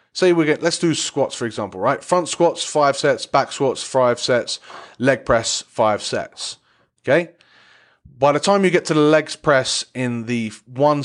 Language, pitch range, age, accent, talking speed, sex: English, 120-150 Hz, 30-49, British, 185 wpm, male